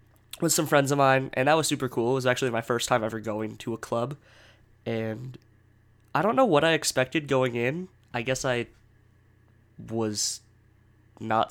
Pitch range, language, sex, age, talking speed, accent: 110-135 Hz, English, male, 20-39, 180 wpm, American